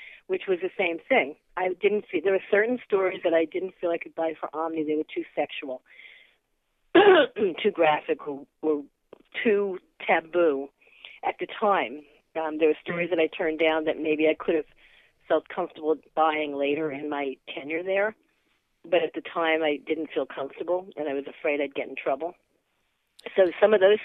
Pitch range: 150-185 Hz